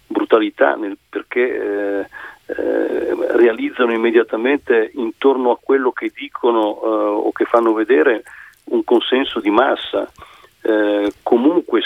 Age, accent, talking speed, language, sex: 40-59, native, 115 wpm, Italian, male